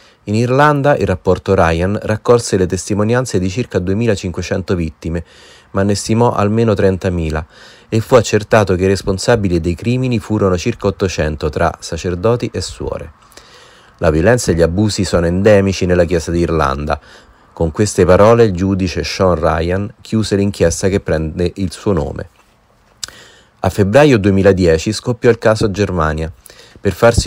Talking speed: 145 wpm